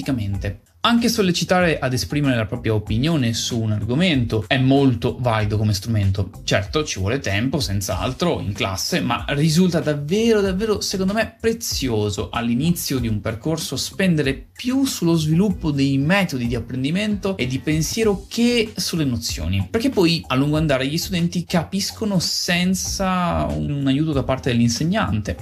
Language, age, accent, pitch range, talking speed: Italian, 20-39, native, 110-170 Hz, 145 wpm